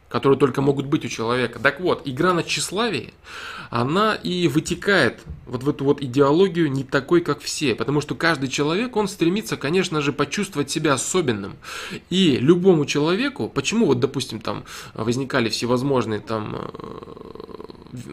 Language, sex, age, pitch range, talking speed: Russian, male, 20-39, 130-175 Hz, 145 wpm